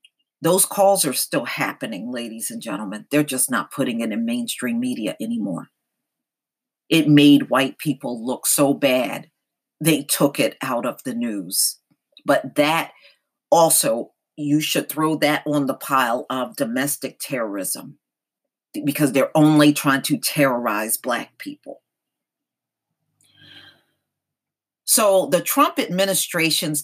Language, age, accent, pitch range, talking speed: English, 40-59, American, 140-205 Hz, 125 wpm